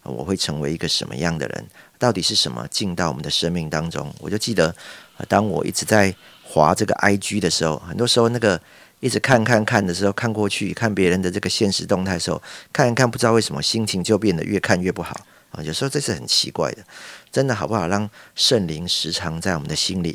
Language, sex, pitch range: Chinese, male, 85-110 Hz